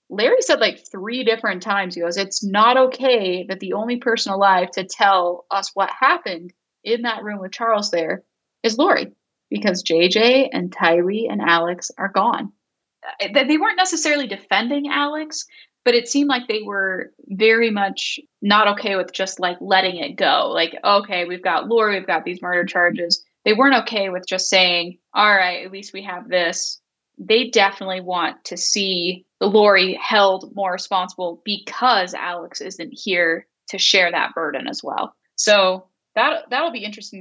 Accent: American